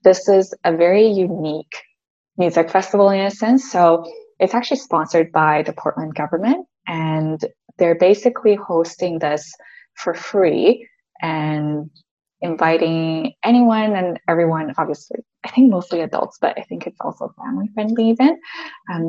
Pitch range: 165-225 Hz